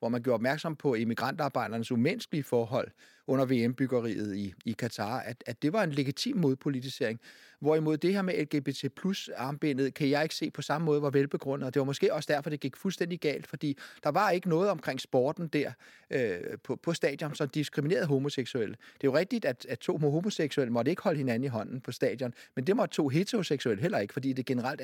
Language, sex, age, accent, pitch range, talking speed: Danish, male, 30-49, native, 130-165 Hz, 205 wpm